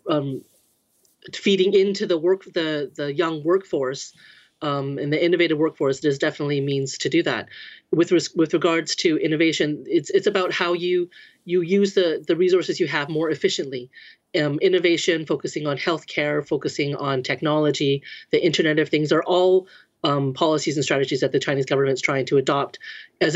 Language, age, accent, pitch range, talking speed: English, 30-49, American, 145-195 Hz, 170 wpm